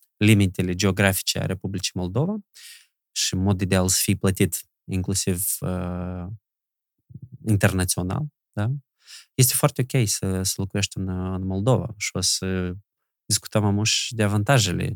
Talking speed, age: 125 wpm, 20-39